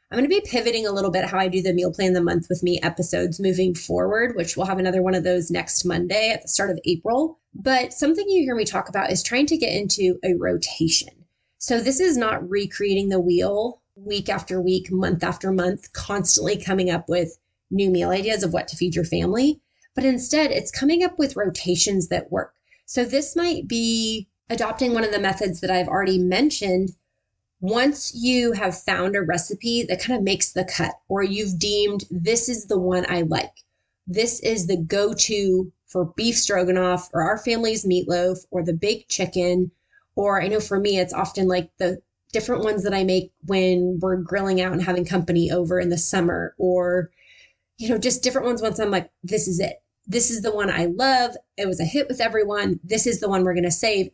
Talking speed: 210 wpm